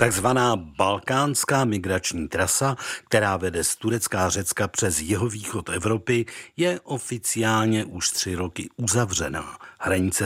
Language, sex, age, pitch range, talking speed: Czech, male, 60-79, 95-115 Hz, 115 wpm